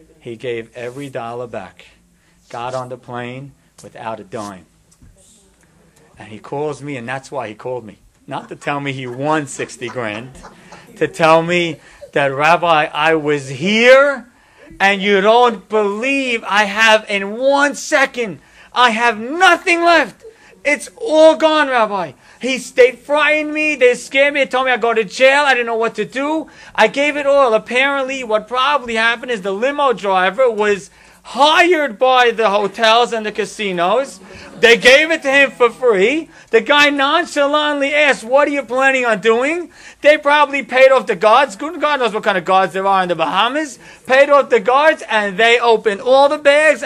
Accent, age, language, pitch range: American, 40-59, English, 190-280 Hz